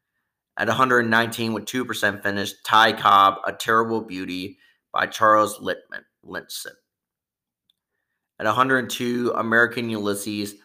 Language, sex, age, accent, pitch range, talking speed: English, male, 30-49, American, 100-120 Hz, 95 wpm